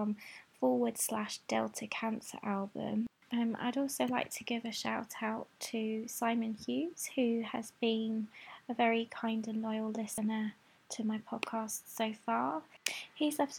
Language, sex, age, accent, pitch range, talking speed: English, female, 20-39, British, 220-250 Hz, 145 wpm